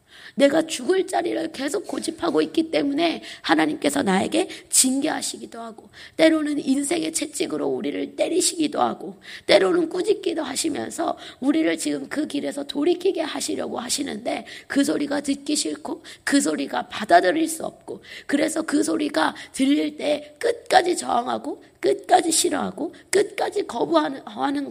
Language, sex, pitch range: Korean, female, 275-335 Hz